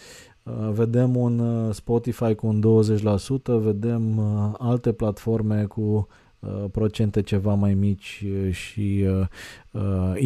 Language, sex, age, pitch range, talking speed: Romanian, male, 20-39, 105-125 Hz, 105 wpm